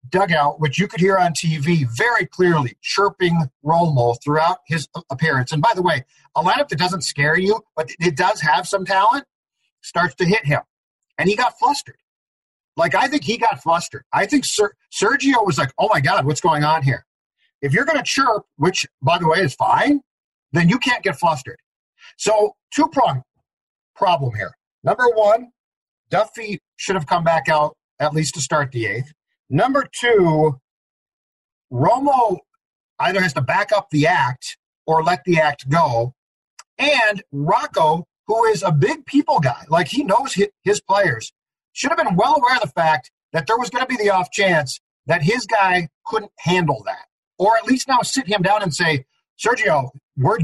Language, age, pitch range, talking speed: English, 50-69, 150-230 Hz, 180 wpm